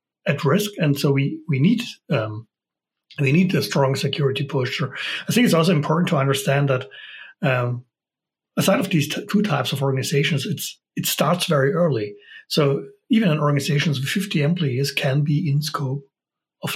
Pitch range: 135-170 Hz